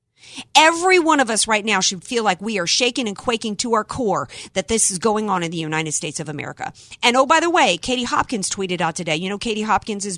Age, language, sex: 50-69, English, female